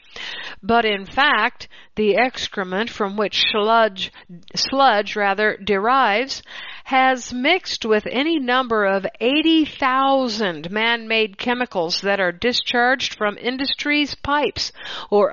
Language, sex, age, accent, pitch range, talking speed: English, female, 60-79, American, 210-275 Hz, 105 wpm